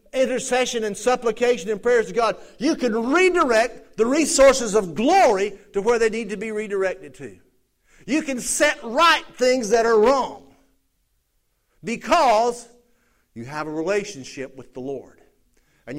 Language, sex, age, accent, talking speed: English, male, 50-69, American, 145 wpm